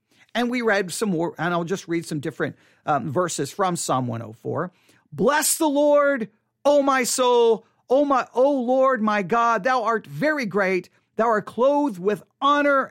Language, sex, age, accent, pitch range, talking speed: English, male, 50-69, American, 180-245 Hz, 170 wpm